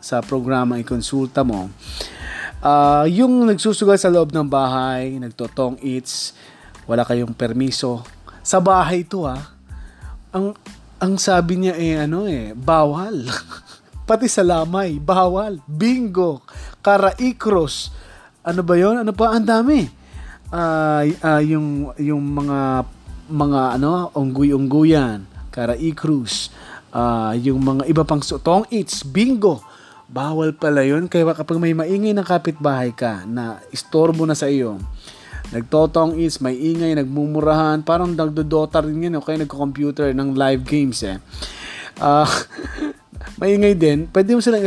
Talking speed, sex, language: 130 wpm, male, Filipino